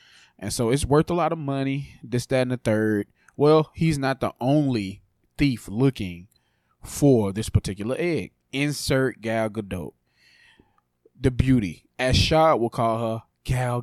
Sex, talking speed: male, 150 wpm